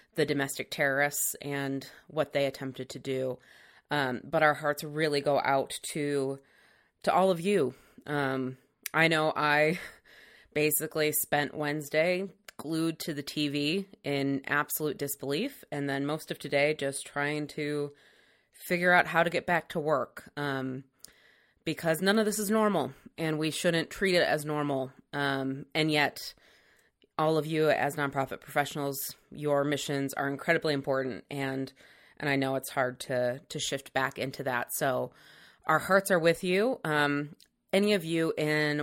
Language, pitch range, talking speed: English, 140-160 Hz, 160 wpm